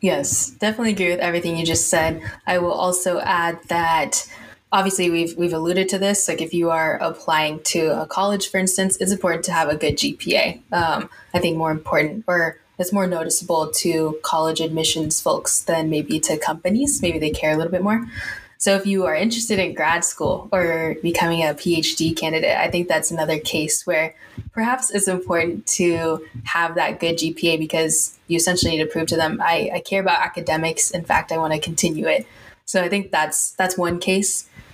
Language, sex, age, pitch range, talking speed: English, female, 10-29, 160-185 Hz, 195 wpm